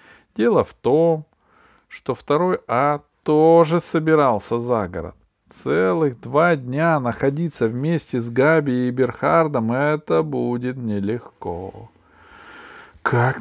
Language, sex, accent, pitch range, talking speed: Russian, male, native, 110-165 Hz, 105 wpm